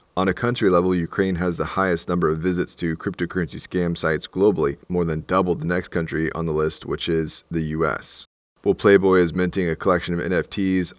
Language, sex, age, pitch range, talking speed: English, male, 20-39, 80-90 Hz, 200 wpm